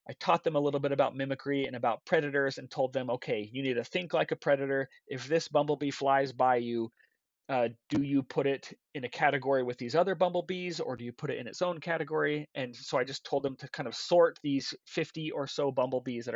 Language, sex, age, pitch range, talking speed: English, male, 30-49, 125-155 Hz, 240 wpm